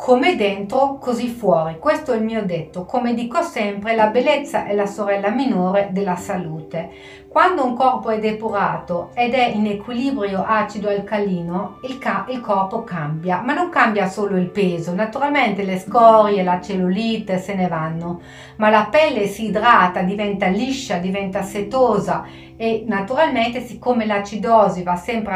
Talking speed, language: 145 wpm, Italian